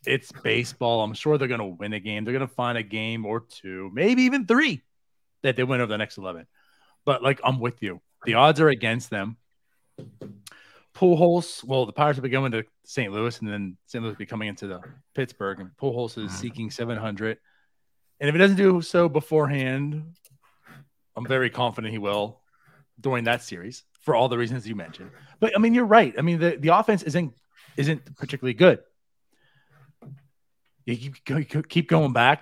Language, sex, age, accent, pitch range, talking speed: English, male, 30-49, American, 115-155 Hz, 190 wpm